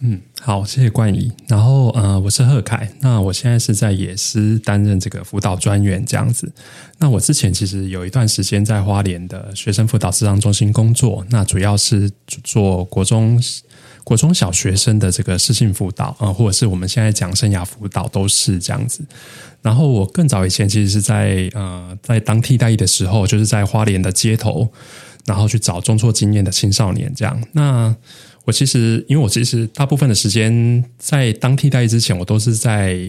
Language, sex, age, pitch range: Chinese, male, 20-39, 105-135 Hz